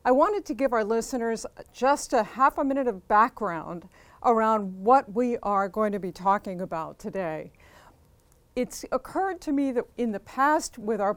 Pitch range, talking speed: 200-255 Hz, 175 wpm